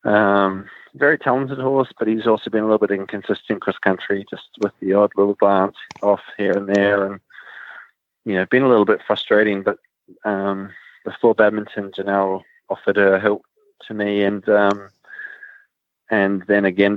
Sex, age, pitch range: male, 20-39, 100-115 Hz